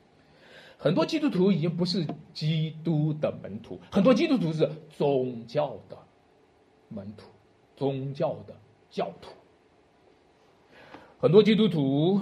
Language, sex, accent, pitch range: Chinese, male, native, 135-215 Hz